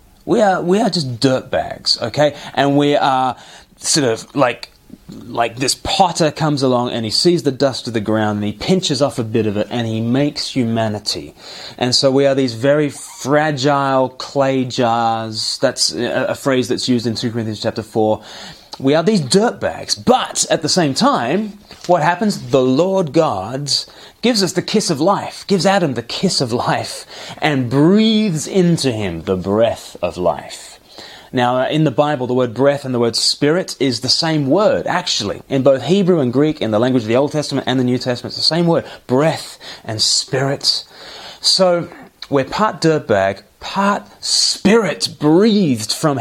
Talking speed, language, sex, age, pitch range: 185 wpm, English, male, 30-49, 120-160 Hz